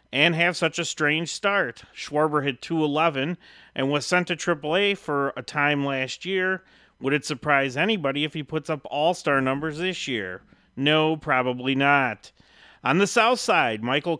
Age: 40-59